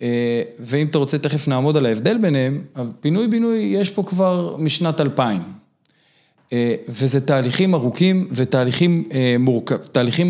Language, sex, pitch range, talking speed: Hebrew, male, 130-165 Hz, 135 wpm